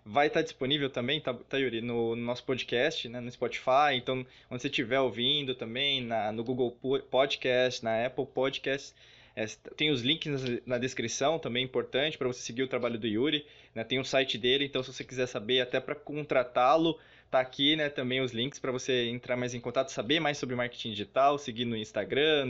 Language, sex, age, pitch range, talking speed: Portuguese, male, 20-39, 125-150 Hz, 200 wpm